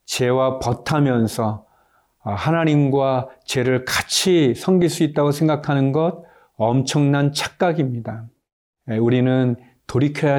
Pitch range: 120-145 Hz